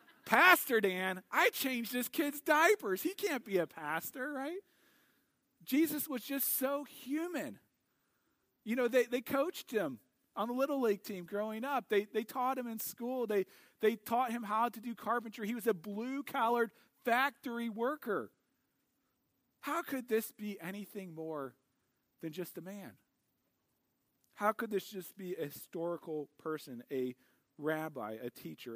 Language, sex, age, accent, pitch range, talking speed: English, male, 40-59, American, 155-235 Hz, 155 wpm